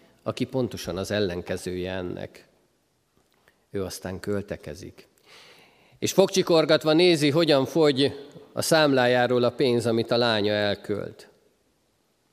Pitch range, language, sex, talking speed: 95-125 Hz, Hungarian, male, 100 wpm